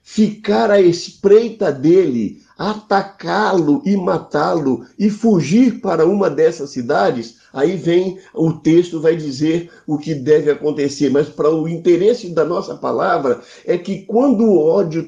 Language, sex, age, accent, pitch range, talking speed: Portuguese, male, 60-79, Brazilian, 165-215 Hz, 140 wpm